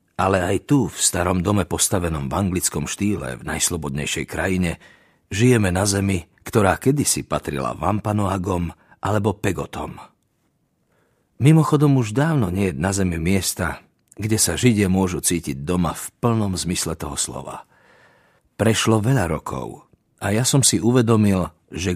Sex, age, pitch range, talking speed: male, 50-69, 85-110 Hz, 135 wpm